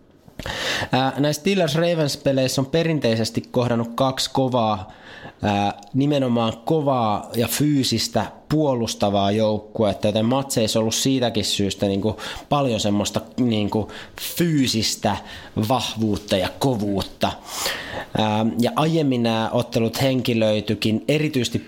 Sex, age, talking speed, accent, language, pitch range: male, 20-39, 90 wpm, native, Finnish, 105-130 Hz